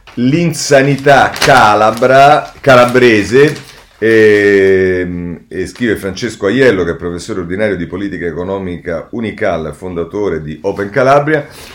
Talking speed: 100 wpm